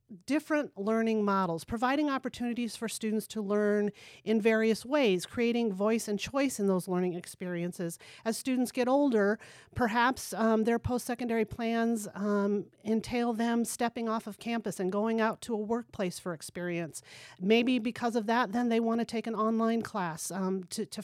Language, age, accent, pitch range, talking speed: English, 40-59, American, 195-235 Hz, 170 wpm